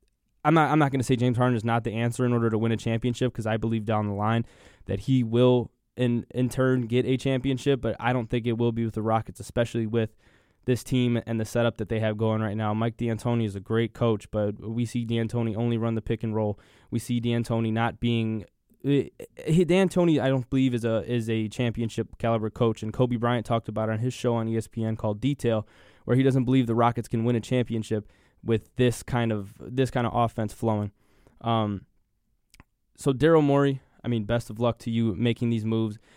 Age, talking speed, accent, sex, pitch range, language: 10-29, 225 wpm, American, male, 110-120 Hz, English